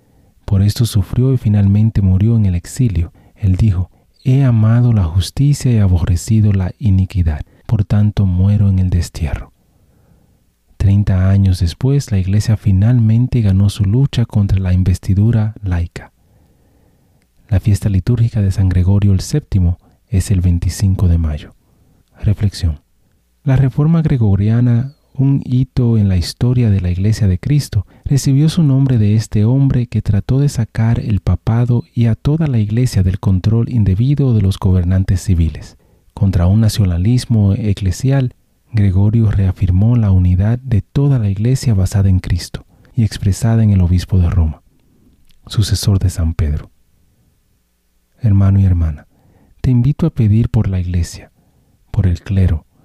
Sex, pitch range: male, 95-120 Hz